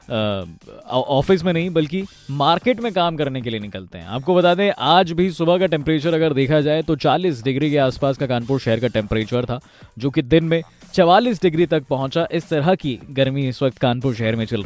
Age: 20-39